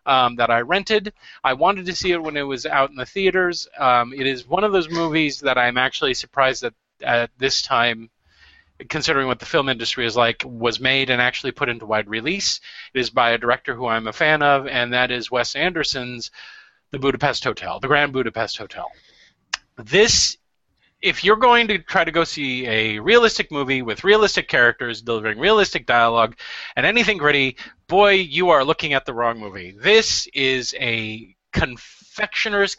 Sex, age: male, 30-49